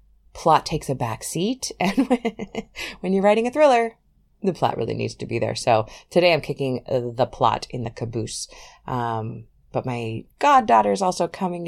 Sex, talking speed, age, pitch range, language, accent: female, 180 wpm, 30-49, 130-195 Hz, English, American